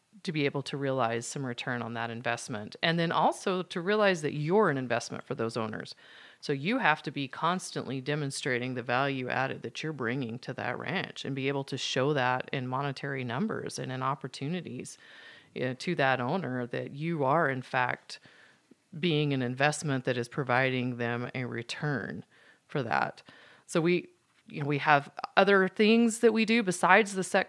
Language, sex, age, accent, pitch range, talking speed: English, female, 30-49, American, 135-180 Hz, 180 wpm